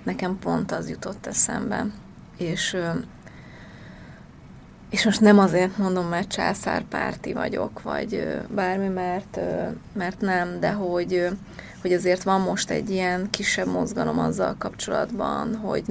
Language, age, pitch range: Hungarian, 30-49, 175-200 Hz